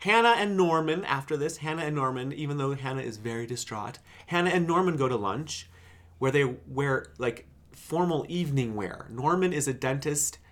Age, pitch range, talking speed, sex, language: 30-49, 110-155 Hz, 175 wpm, male, English